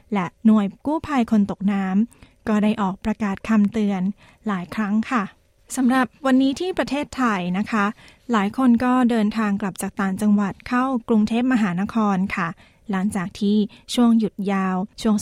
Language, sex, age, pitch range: Thai, female, 20-39, 200-230 Hz